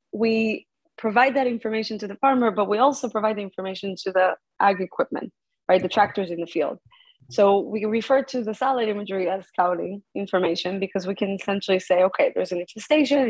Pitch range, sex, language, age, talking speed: 190-230 Hz, female, English, 20-39, 190 wpm